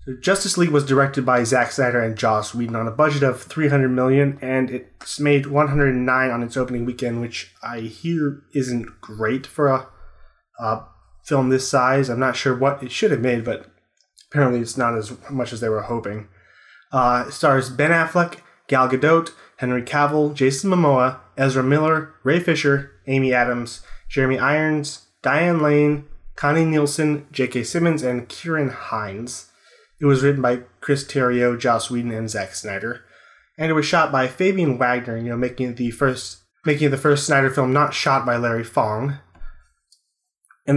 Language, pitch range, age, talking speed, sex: English, 120-145 Hz, 20-39, 170 wpm, male